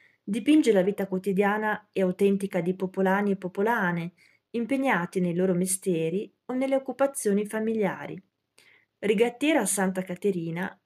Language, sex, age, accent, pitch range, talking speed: Italian, female, 30-49, native, 185-230 Hz, 115 wpm